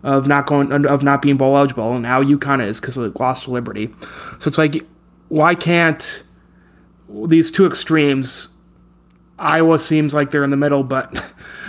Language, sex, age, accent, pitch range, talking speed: English, male, 30-49, American, 130-150 Hz, 170 wpm